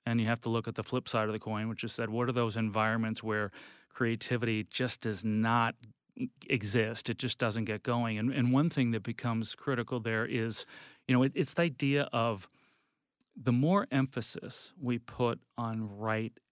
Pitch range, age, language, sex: 110-125 Hz, 40-59, English, male